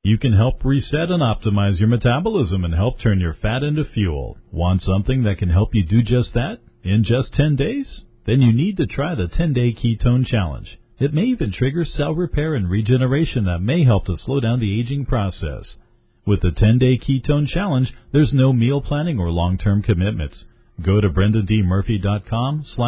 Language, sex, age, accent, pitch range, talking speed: English, male, 50-69, American, 105-140 Hz, 180 wpm